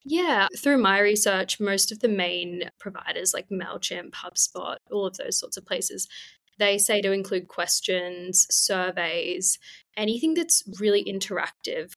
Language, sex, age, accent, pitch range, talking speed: English, female, 10-29, Australian, 180-215 Hz, 140 wpm